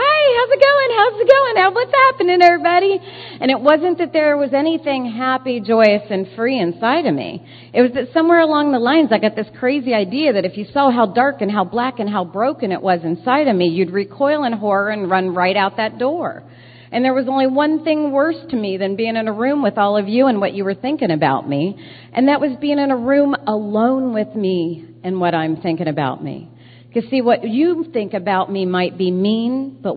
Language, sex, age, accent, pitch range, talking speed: English, female, 40-59, American, 185-255 Hz, 230 wpm